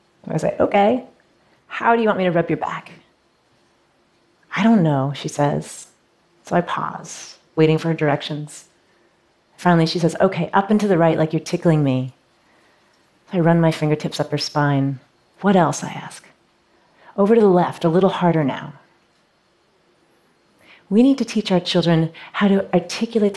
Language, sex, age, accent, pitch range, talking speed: Portuguese, female, 30-49, American, 150-180 Hz, 165 wpm